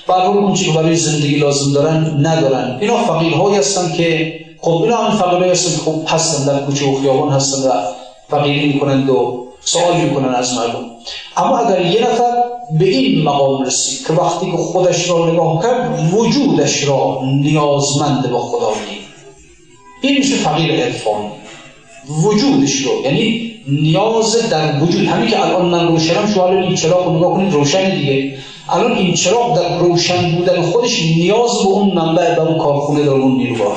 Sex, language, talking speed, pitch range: male, Persian, 155 wpm, 145-215 Hz